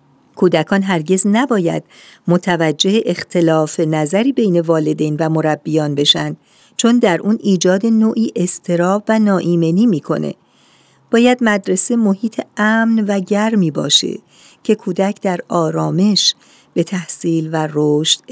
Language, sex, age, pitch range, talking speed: Persian, female, 50-69, 160-205 Hz, 115 wpm